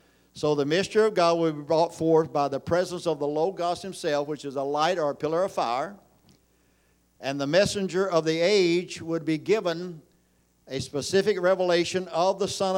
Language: English